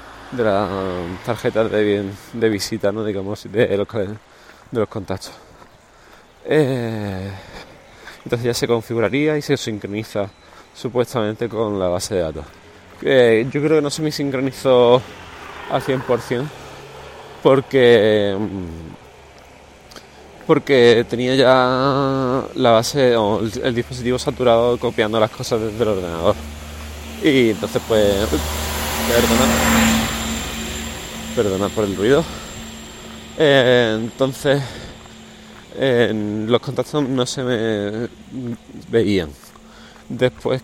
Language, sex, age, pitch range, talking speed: Spanish, male, 20-39, 100-125 Hz, 110 wpm